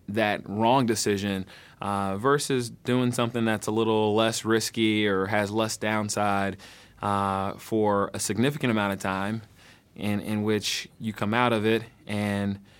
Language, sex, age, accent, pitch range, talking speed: English, male, 20-39, American, 100-115 Hz, 155 wpm